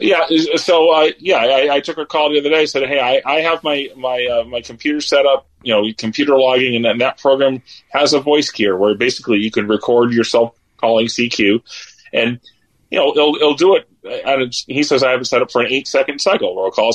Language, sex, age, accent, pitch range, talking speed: English, male, 30-49, American, 115-150 Hz, 235 wpm